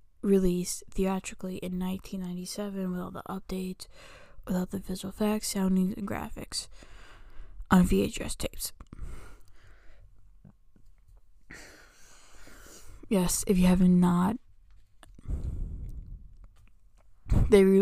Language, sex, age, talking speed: English, female, 10-29, 80 wpm